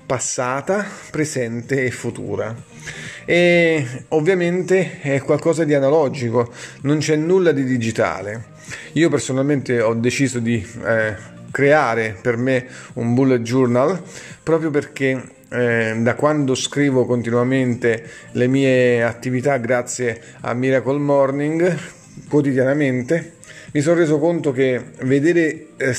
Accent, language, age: native, Italian, 30-49